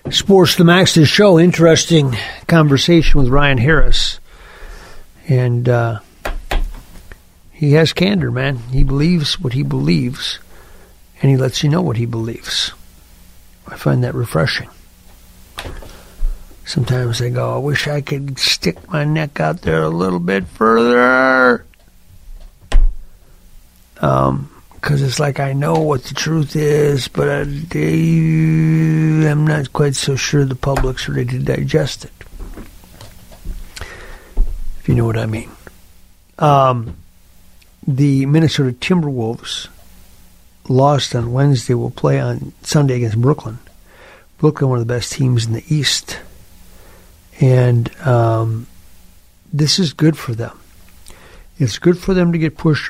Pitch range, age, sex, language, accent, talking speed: 110-150 Hz, 60-79, male, English, American, 130 wpm